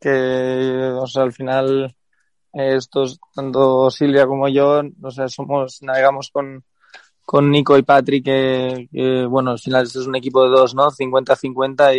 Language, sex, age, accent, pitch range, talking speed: Spanish, male, 20-39, Spanish, 125-140 Hz, 170 wpm